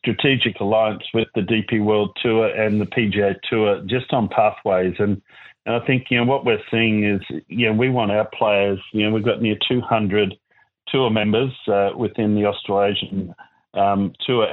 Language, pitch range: English, 100-110 Hz